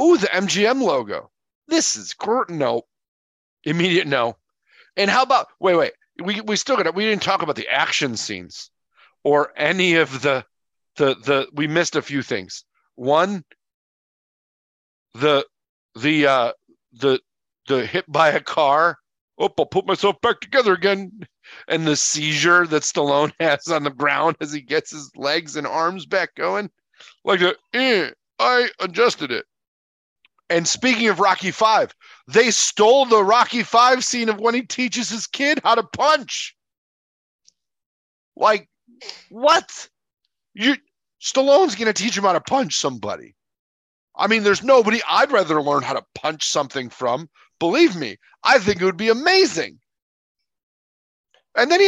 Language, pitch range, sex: English, 150-250 Hz, male